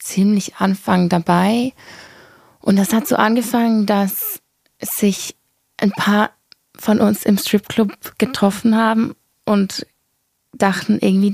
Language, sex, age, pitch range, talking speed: German, female, 20-39, 180-205 Hz, 110 wpm